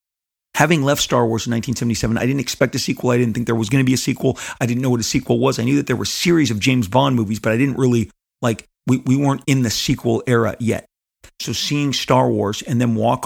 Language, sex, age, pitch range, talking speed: English, male, 40-59, 110-130 Hz, 260 wpm